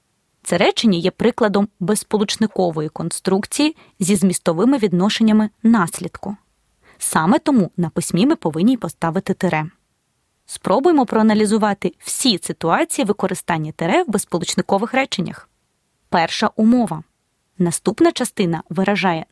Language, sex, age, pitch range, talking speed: Ukrainian, female, 20-39, 180-235 Hz, 100 wpm